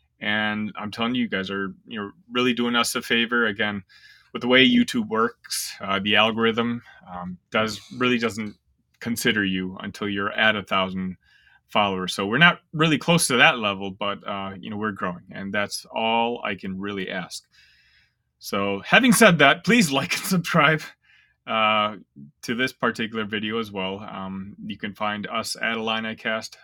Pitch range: 100-120 Hz